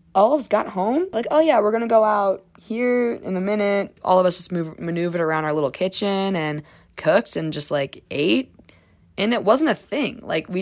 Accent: American